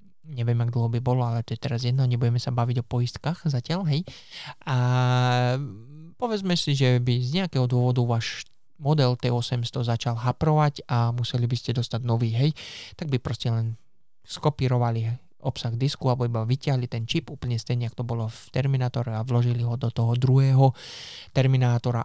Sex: male